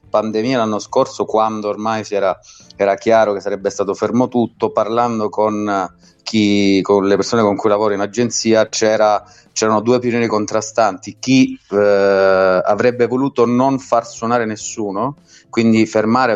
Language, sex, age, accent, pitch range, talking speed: Italian, male, 30-49, native, 100-120 Hz, 135 wpm